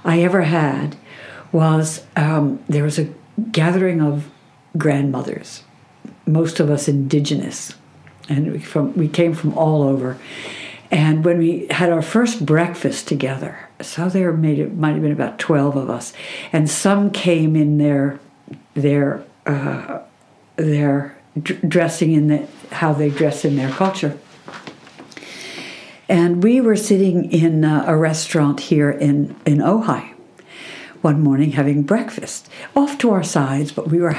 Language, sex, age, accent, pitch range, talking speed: English, female, 60-79, American, 150-175 Hz, 140 wpm